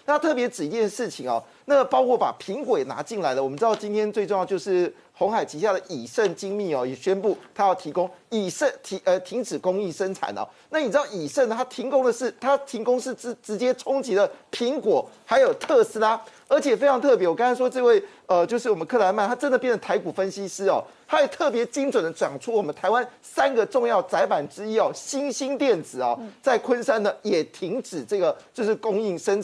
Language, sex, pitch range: Chinese, male, 200-275 Hz